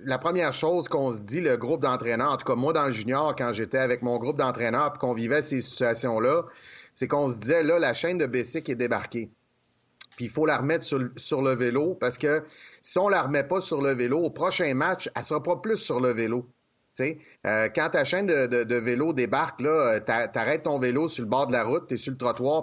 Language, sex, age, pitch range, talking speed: French, male, 30-49, 125-155 Hz, 245 wpm